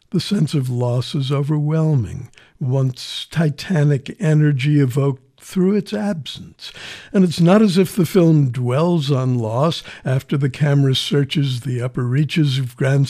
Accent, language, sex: American, English, male